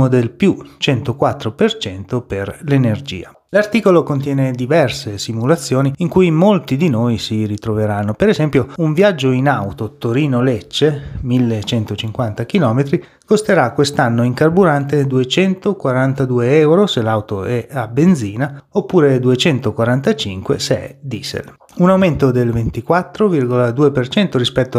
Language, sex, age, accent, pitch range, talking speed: Italian, male, 30-49, native, 120-155 Hz, 115 wpm